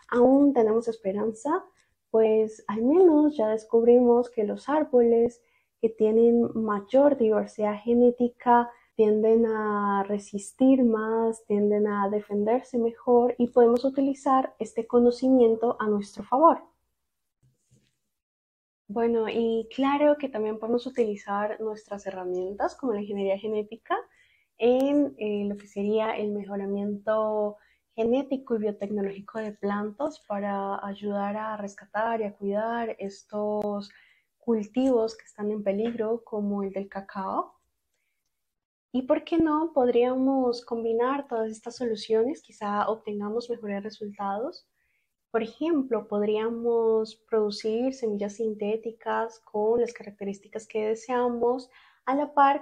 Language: Spanish